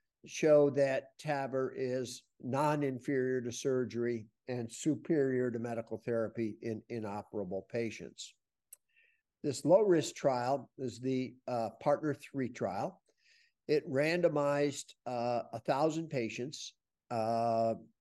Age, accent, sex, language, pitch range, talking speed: 50-69, American, male, English, 120-145 Hz, 95 wpm